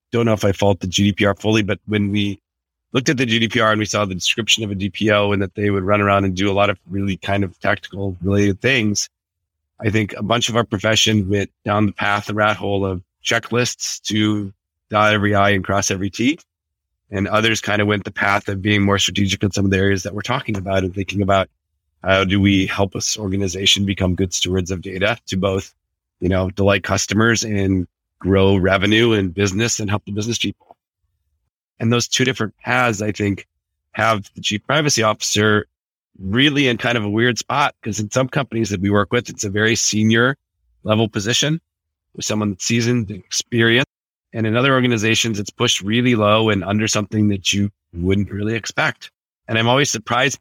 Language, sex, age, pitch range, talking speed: English, male, 30-49, 95-110 Hz, 205 wpm